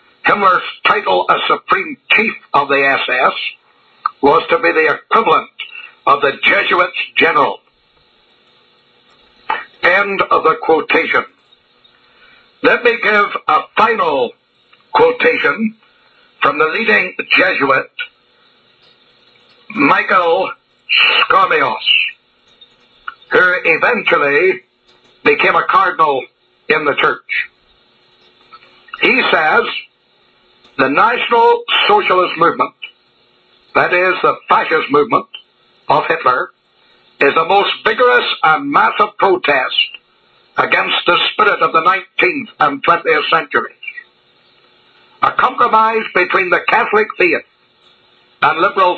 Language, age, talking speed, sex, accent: English, 60-79, 95 wpm, male, American